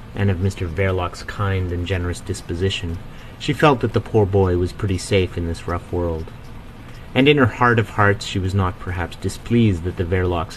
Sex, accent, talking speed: male, American, 200 wpm